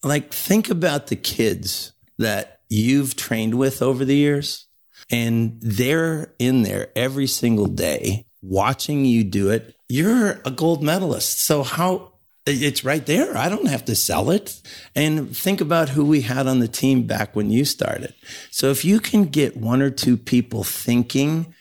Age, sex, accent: 50-69, male, American